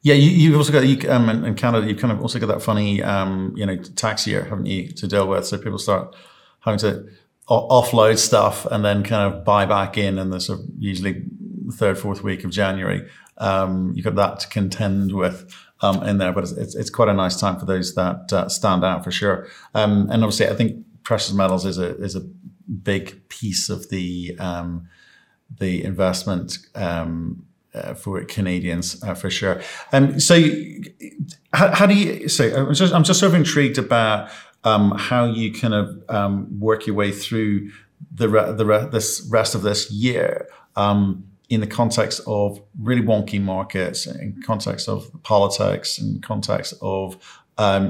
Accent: British